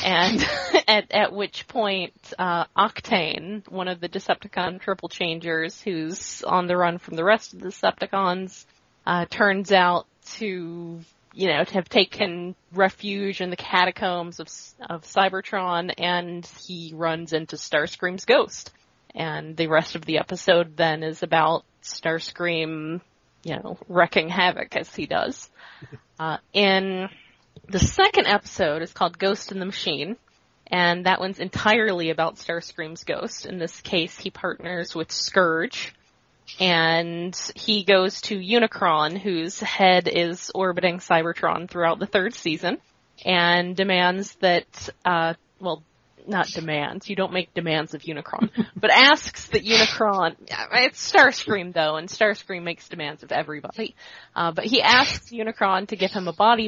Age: 20-39